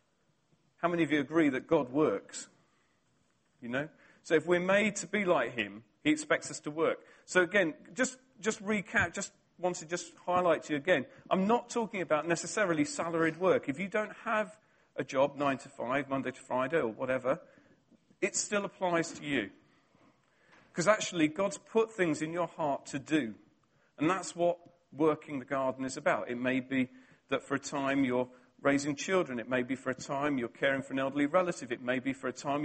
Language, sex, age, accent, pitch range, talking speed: English, male, 40-59, British, 140-185 Hz, 195 wpm